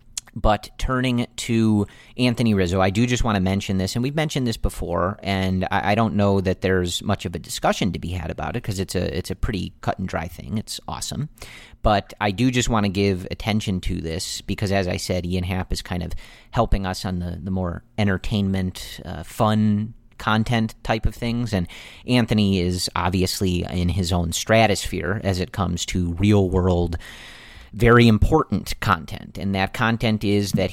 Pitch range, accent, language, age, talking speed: 90-110 Hz, American, English, 40-59, 185 wpm